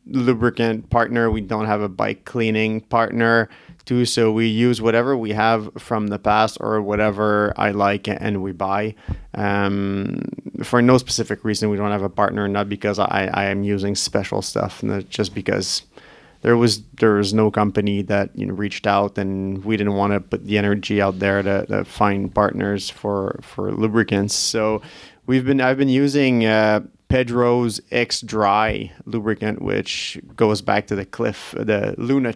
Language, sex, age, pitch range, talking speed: French, male, 30-49, 105-125 Hz, 175 wpm